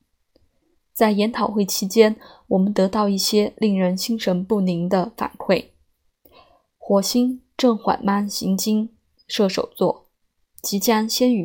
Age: 20-39